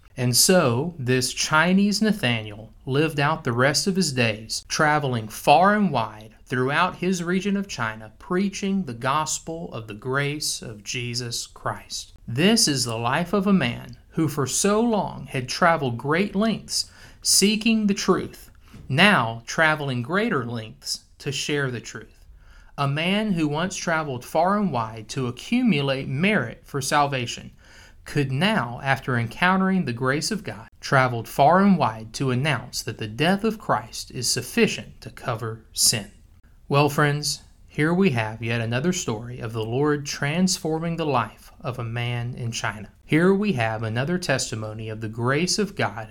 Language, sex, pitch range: English, male, 115-170 Hz